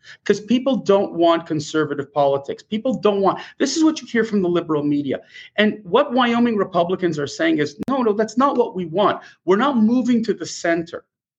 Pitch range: 165-235 Hz